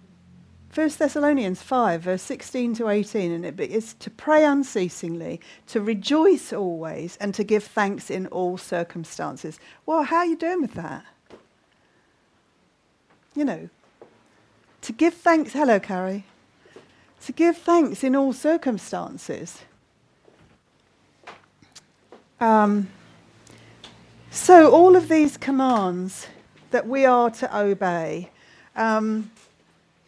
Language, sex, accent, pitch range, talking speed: English, female, British, 195-300 Hz, 110 wpm